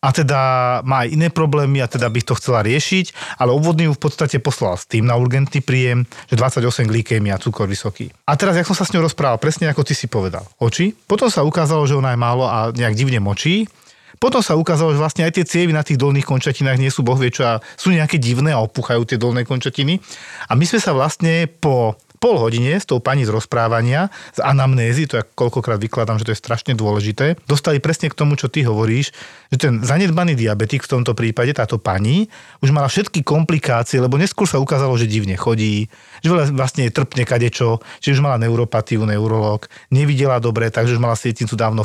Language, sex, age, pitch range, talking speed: Slovak, male, 40-59, 120-150 Hz, 210 wpm